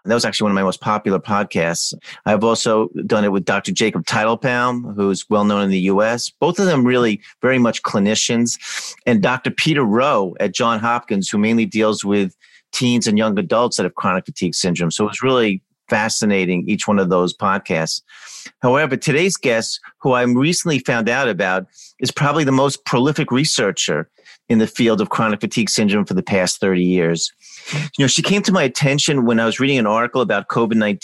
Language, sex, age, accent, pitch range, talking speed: English, male, 40-59, American, 100-125 Hz, 195 wpm